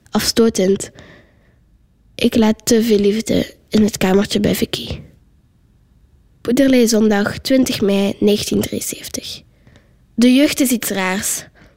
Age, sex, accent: 10-29, female, Dutch